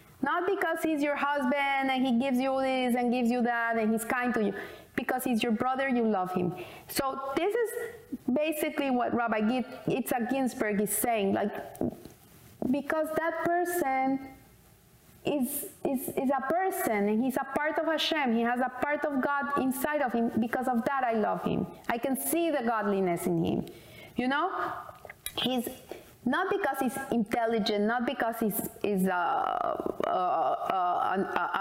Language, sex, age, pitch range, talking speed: English, female, 30-49, 230-320 Hz, 170 wpm